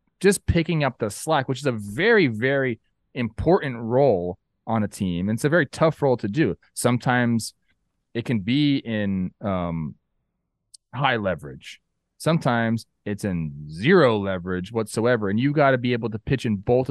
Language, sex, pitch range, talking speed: English, male, 110-135 Hz, 165 wpm